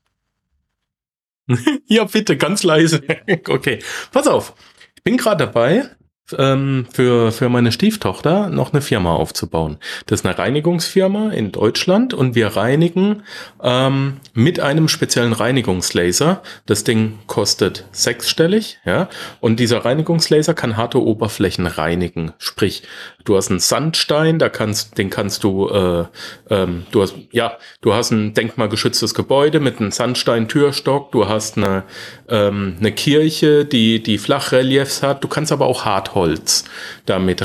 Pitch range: 110-150 Hz